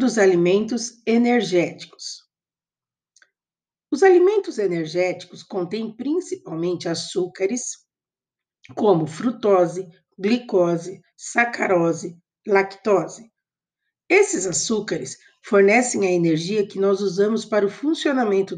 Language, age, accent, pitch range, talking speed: Portuguese, 50-69, Brazilian, 180-235 Hz, 80 wpm